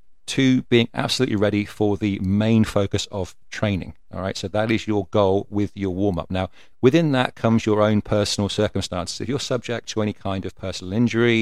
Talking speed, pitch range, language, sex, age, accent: 195 wpm, 100-115 Hz, English, male, 40-59, British